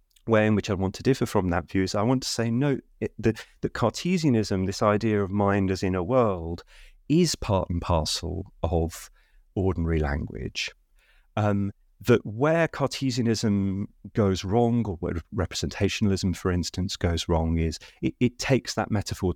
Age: 30-49